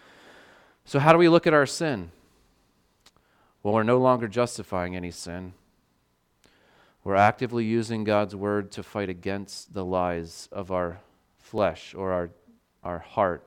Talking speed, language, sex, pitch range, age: 145 wpm, English, male, 95-120 Hz, 30-49